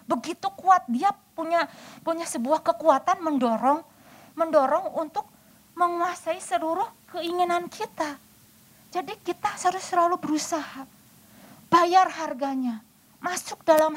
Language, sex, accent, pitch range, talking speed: Indonesian, female, native, 225-330 Hz, 100 wpm